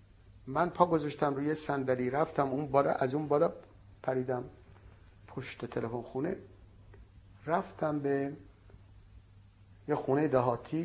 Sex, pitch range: male, 100-150 Hz